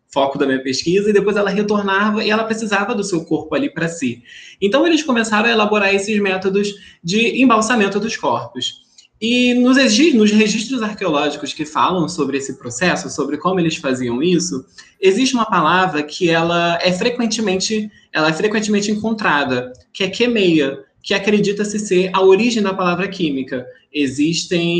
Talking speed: 155 wpm